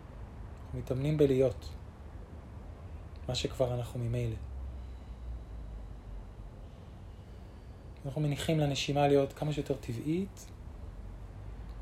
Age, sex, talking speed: 20-39, male, 65 wpm